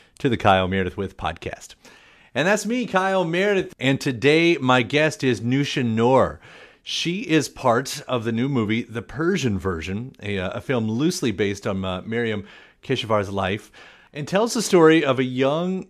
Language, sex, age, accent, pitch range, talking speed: English, male, 40-59, American, 115-145 Hz, 170 wpm